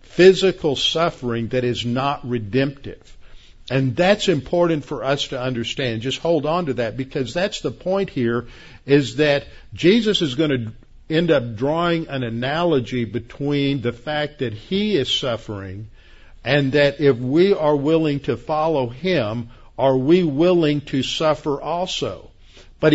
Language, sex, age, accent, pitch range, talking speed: English, male, 50-69, American, 120-155 Hz, 150 wpm